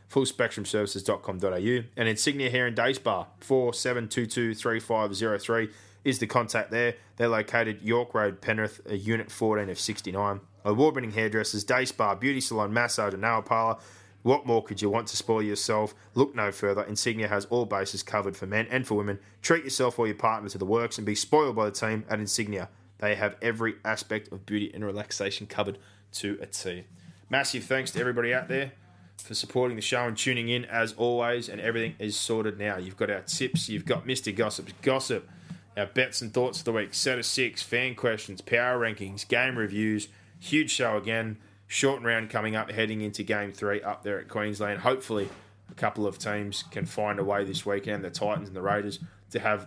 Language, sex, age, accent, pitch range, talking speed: English, male, 20-39, Australian, 105-120 Hz, 190 wpm